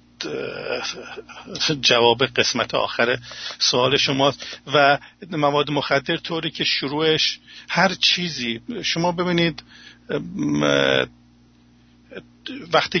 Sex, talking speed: male, 75 wpm